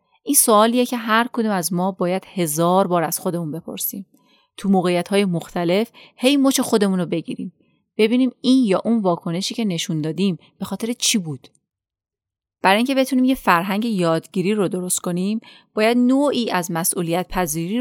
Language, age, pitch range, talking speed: Persian, 30-49, 175-215 Hz, 160 wpm